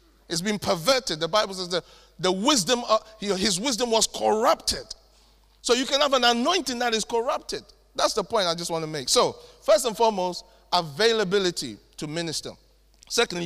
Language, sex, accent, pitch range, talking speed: English, male, Nigerian, 190-240 Hz, 170 wpm